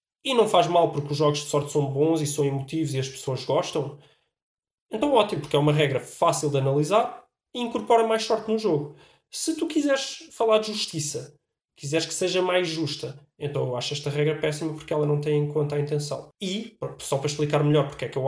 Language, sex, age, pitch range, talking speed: Portuguese, male, 20-39, 150-185 Hz, 220 wpm